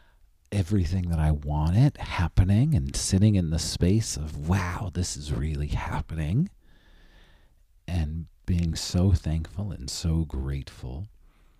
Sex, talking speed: male, 125 wpm